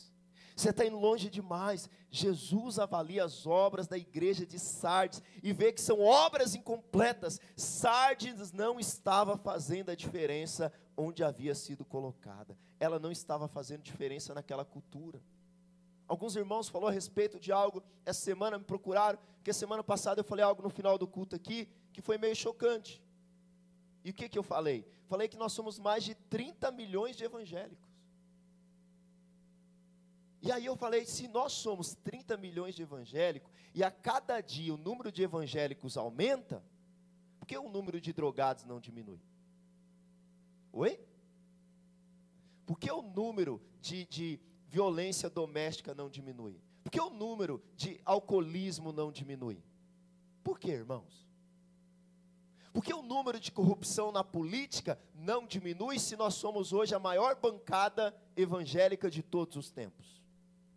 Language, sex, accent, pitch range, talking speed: Portuguese, male, Brazilian, 175-205 Hz, 150 wpm